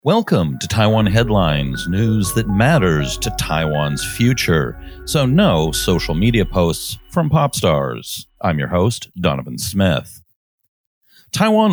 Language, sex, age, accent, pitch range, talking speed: English, male, 40-59, American, 85-120 Hz, 125 wpm